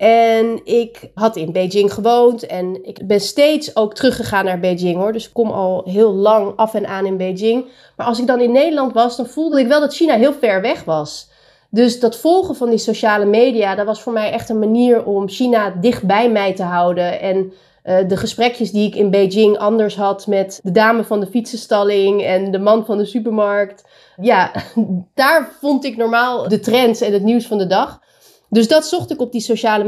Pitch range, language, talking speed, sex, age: 200-250 Hz, Dutch, 215 wpm, female, 30-49